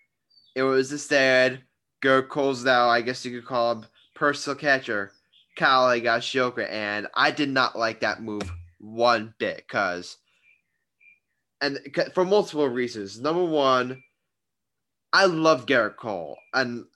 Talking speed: 140 wpm